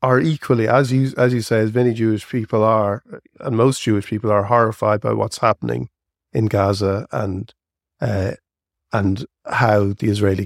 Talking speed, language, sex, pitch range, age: 165 wpm, English, male, 100-115 Hz, 50-69